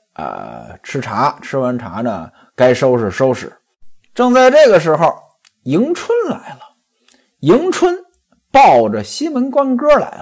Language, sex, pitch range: Chinese, male, 165-265 Hz